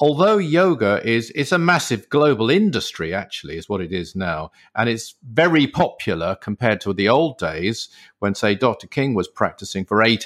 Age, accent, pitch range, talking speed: 50-69, British, 105-140 Hz, 175 wpm